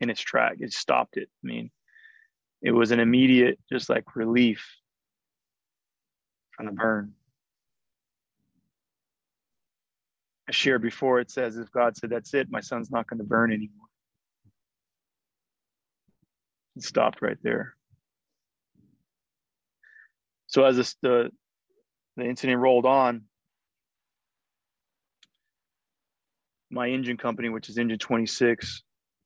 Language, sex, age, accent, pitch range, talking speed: English, male, 30-49, American, 115-125 Hz, 110 wpm